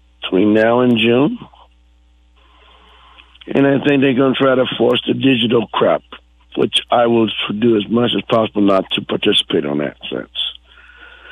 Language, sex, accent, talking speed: English, male, American, 160 wpm